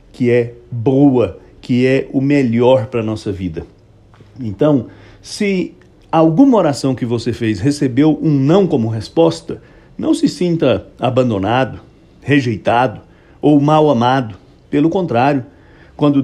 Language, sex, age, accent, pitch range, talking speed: English, male, 60-79, Brazilian, 115-155 Hz, 125 wpm